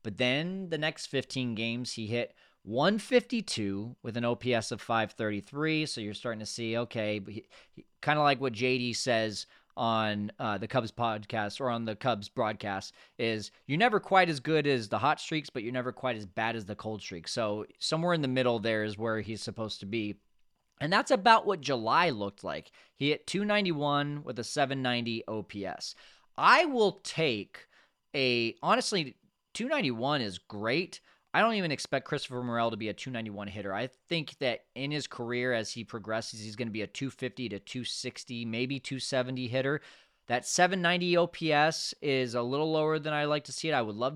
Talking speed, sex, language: 185 wpm, male, English